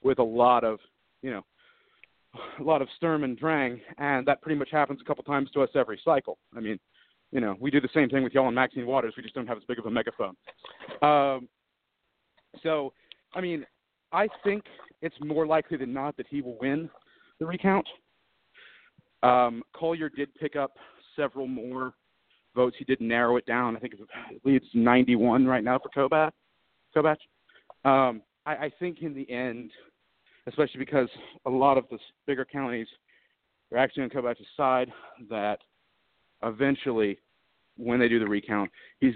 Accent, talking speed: American, 180 wpm